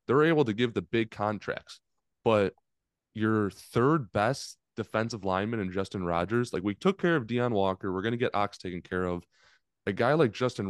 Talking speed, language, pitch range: 195 wpm, English, 95-130 Hz